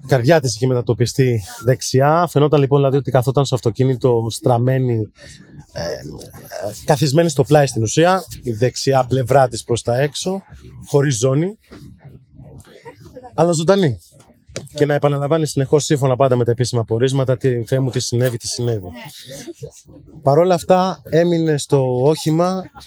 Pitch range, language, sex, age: 120-155 Hz, Greek, male, 30-49